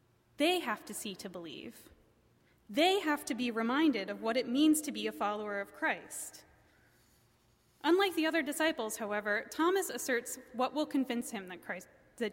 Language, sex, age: English, female, 20-39